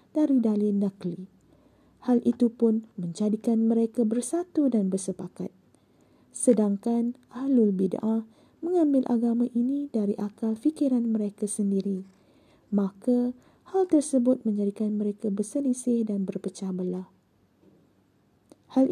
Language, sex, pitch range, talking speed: Malay, female, 200-250 Hz, 100 wpm